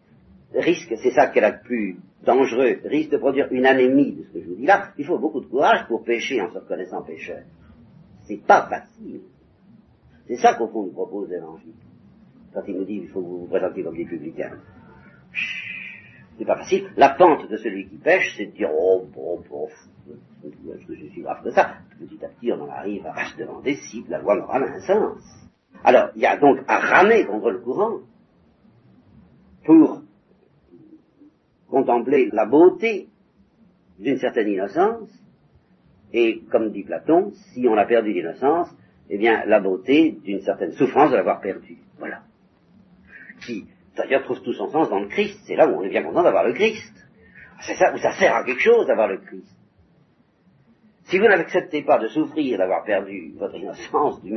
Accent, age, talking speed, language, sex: French, 50-69, 190 wpm, French, male